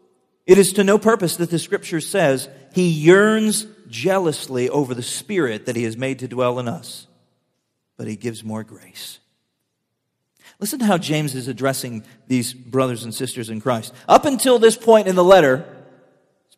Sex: male